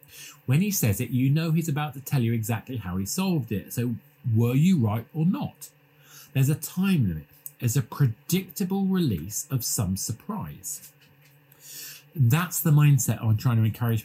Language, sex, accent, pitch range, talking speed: English, male, British, 110-155 Hz, 170 wpm